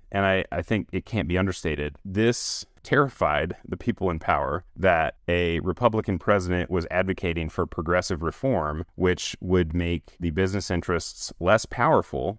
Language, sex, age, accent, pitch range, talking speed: English, male, 30-49, American, 80-100 Hz, 150 wpm